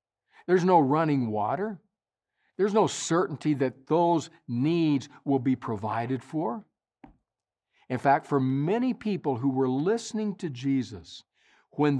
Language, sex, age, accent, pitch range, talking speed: English, male, 60-79, American, 130-175 Hz, 125 wpm